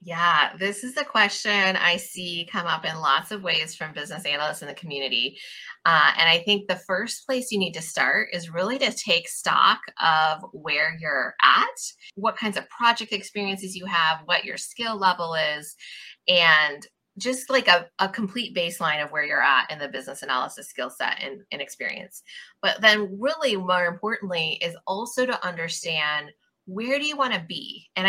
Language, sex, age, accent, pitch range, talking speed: English, female, 20-39, American, 165-215 Hz, 185 wpm